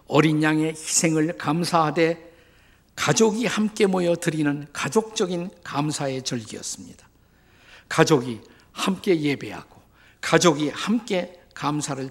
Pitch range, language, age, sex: 125-175 Hz, Korean, 50-69, male